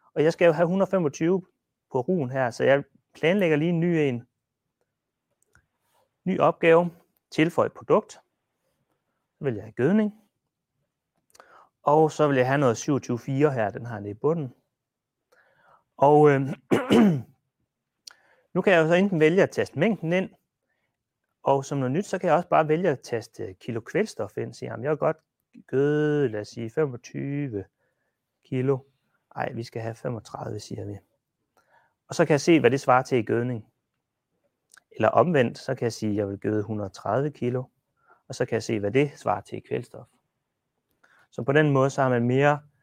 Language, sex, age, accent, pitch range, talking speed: Danish, male, 30-49, native, 115-155 Hz, 175 wpm